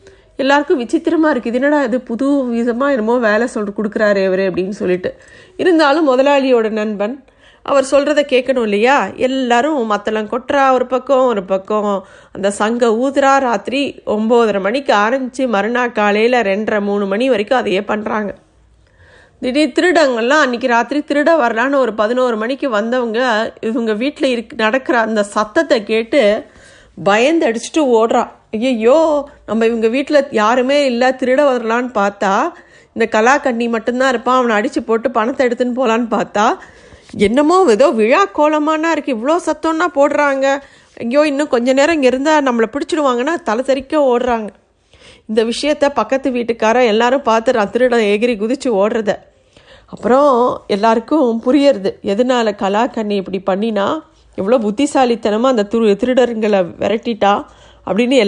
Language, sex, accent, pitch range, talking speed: Tamil, female, native, 215-275 Hz, 130 wpm